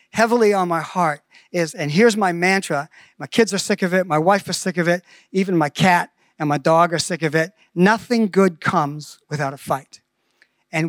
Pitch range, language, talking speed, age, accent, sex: 170-220 Hz, English, 210 wpm, 50-69, American, male